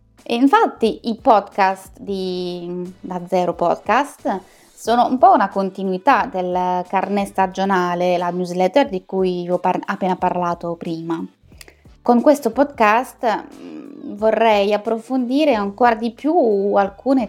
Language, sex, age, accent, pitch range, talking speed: Italian, female, 20-39, native, 180-220 Hz, 115 wpm